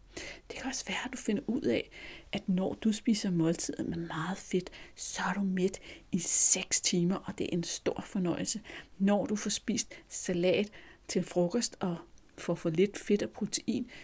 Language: Danish